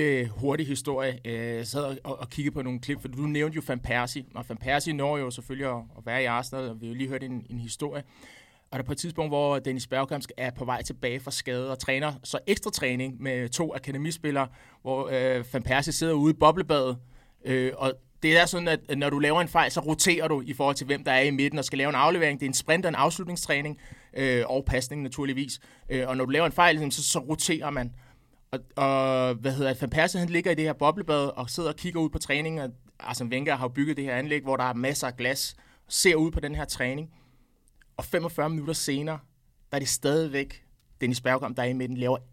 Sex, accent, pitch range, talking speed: male, native, 130-150 Hz, 230 wpm